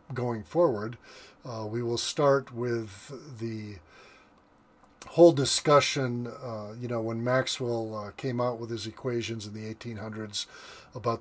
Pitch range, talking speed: 115-135 Hz, 135 wpm